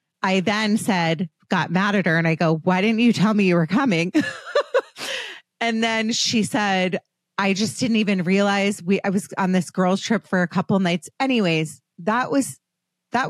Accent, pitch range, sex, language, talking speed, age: American, 160-195 Hz, female, English, 190 wpm, 30-49